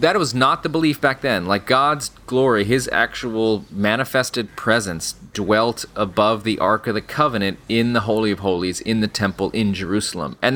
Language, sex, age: English, male, 30-49